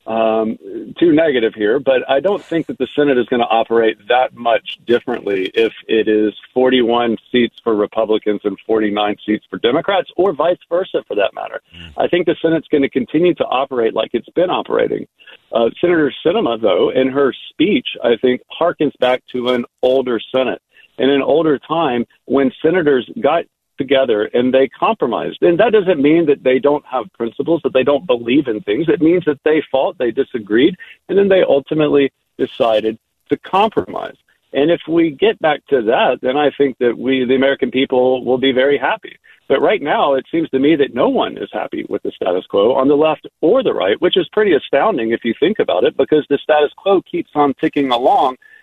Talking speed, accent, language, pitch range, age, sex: 200 wpm, American, English, 125-190 Hz, 50-69, male